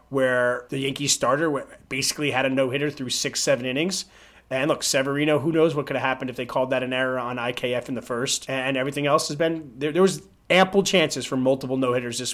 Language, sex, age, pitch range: English, male, 30-49, 130-165 Hz